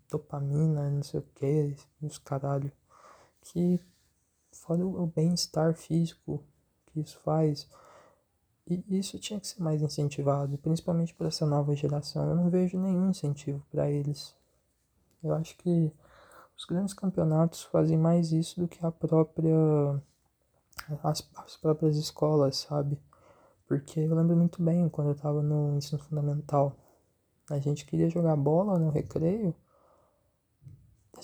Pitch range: 145-170 Hz